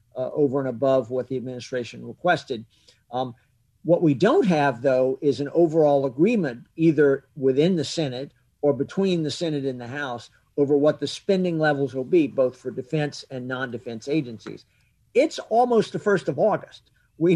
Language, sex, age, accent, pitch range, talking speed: English, male, 50-69, American, 125-155 Hz, 170 wpm